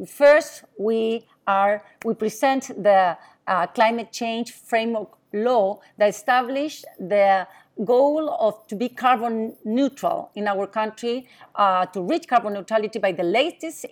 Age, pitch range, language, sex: 40-59, 210-255 Hz, English, female